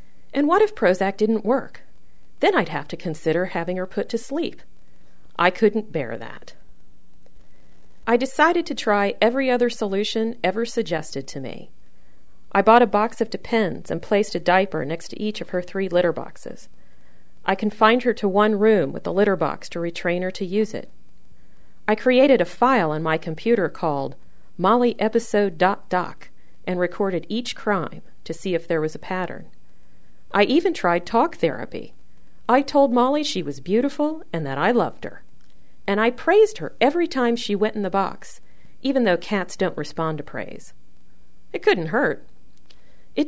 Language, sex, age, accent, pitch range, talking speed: English, female, 40-59, American, 165-235 Hz, 170 wpm